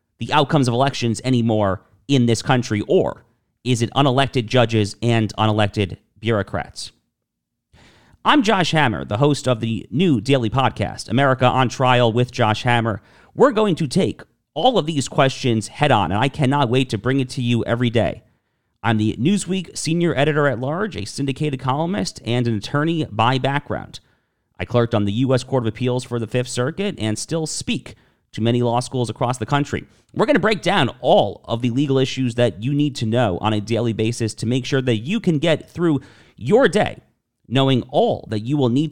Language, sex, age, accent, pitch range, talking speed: English, male, 40-59, American, 115-140 Hz, 185 wpm